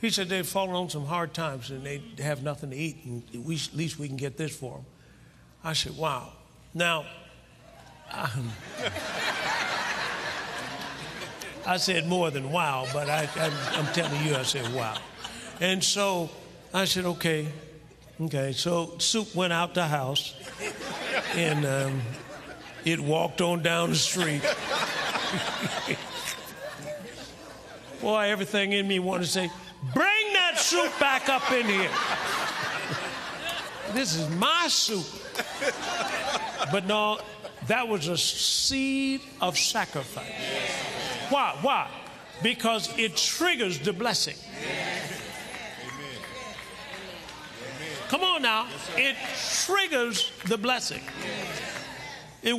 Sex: male